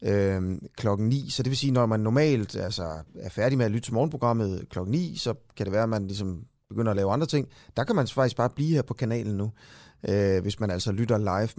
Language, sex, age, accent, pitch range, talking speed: Danish, male, 30-49, native, 105-135 Hz, 250 wpm